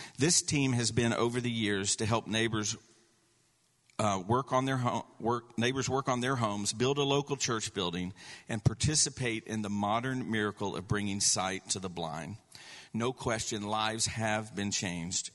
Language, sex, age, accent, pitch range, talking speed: English, male, 50-69, American, 100-125 Hz, 150 wpm